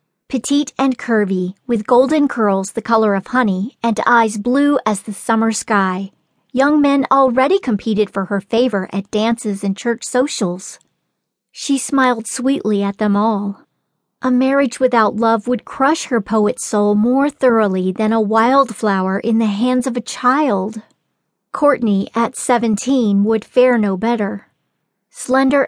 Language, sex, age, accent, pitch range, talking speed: English, female, 40-59, American, 200-250 Hz, 145 wpm